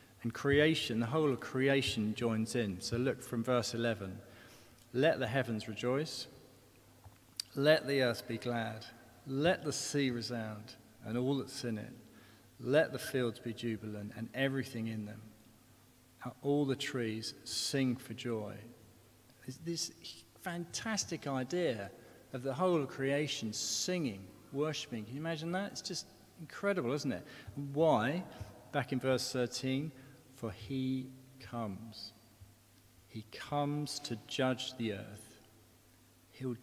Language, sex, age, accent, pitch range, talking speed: English, male, 40-59, British, 110-130 Hz, 135 wpm